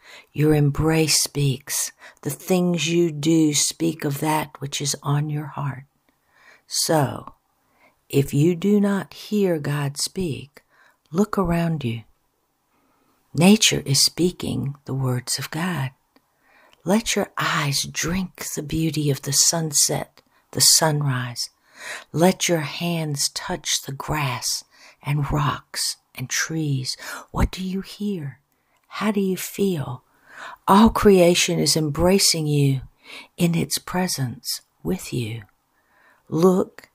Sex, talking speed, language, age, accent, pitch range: female, 120 wpm, English, 60-79, American, 140-170 Hz